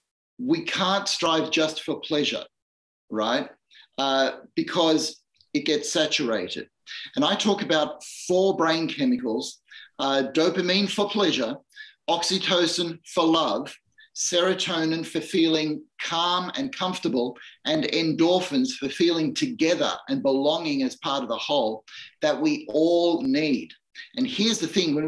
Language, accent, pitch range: English, Australian, 155-250 Hz